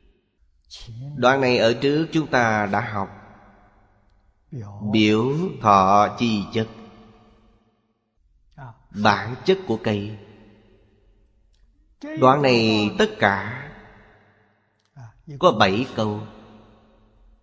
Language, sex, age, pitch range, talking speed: Vietnamese, male, 30-49, 100-130 Hz, 80 wpm